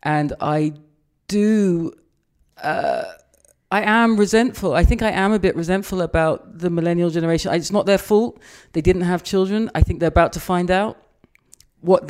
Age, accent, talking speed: 40-59, British, 170 wpm